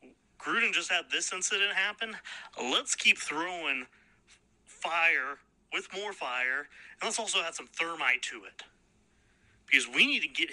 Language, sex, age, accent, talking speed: English, male, 30-49, American, 150 wpm